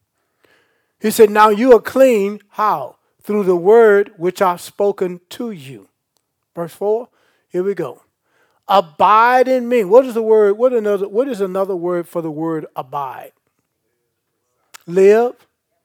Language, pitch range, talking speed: English, 175-215 Hz, 145 wpm